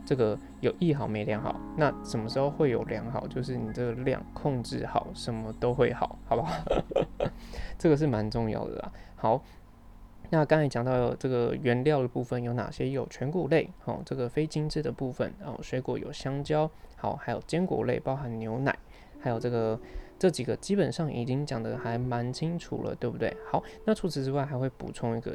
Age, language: 20-39, Chinese